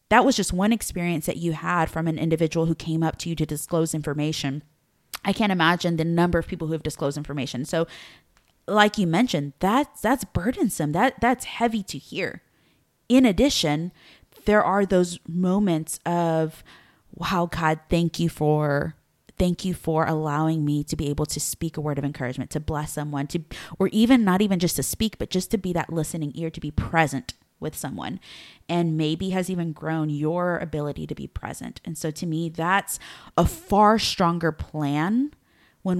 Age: 20-39